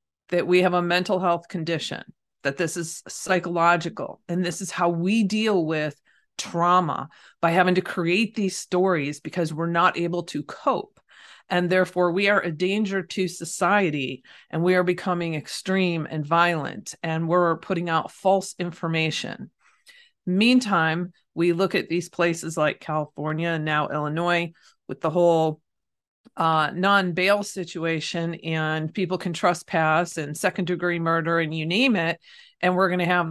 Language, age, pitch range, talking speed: English, 40-59, 165-195 Hz, 155 wpm